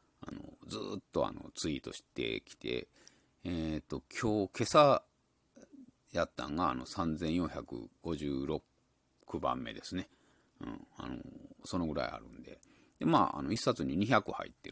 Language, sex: Japanese, male